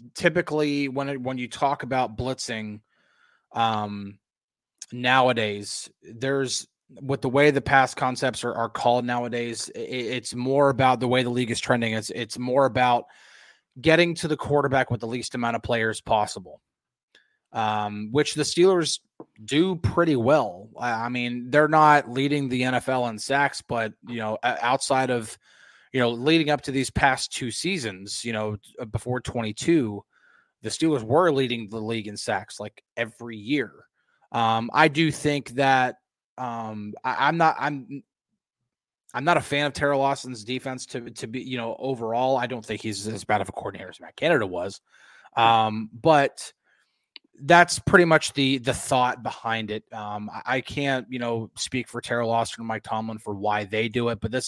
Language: English